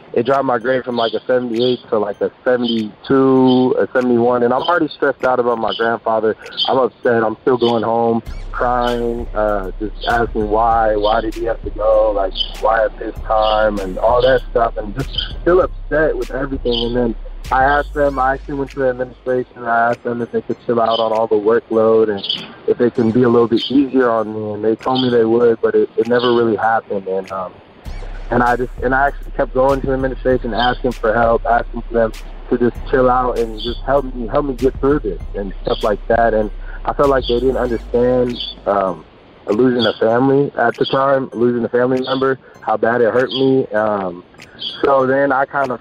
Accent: American